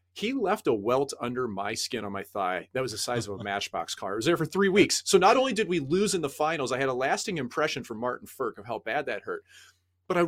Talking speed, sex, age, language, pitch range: 280 wpm, male, 30-49, English, 100-155 Hz